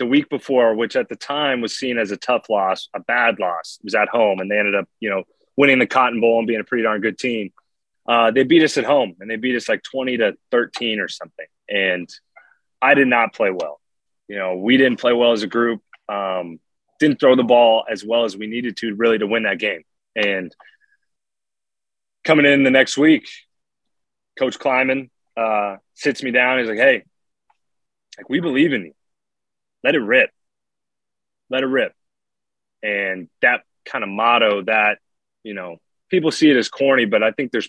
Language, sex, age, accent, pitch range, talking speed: English, male, 20-39, American, 105-135 Hz, 200 wpm